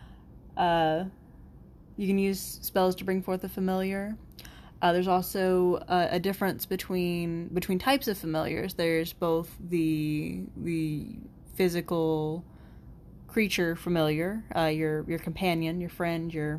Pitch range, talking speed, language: 155-185 Hz, 125 wpm, English